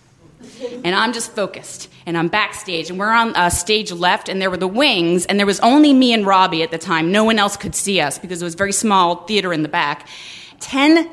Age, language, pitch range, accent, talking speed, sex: 30-49, English, 170-275 Hz, American, 245 wpm, female